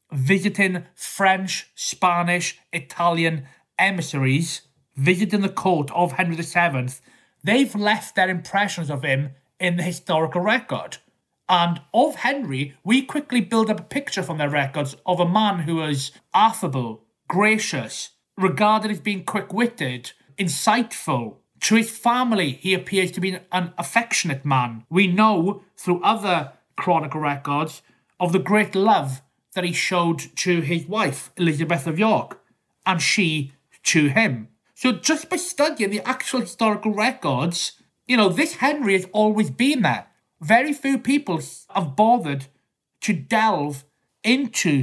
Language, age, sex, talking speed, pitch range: English, 30-49, male, 140 wpm, 160-215 Hz